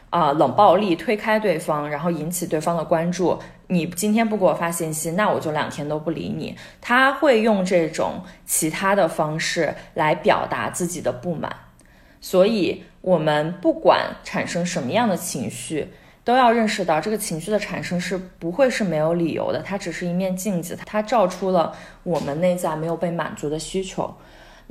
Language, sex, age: Chinese, female, 20-39